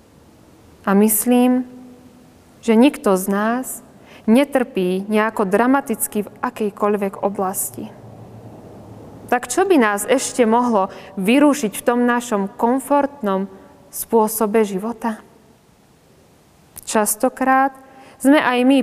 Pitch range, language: 205-260 Hz, Slovak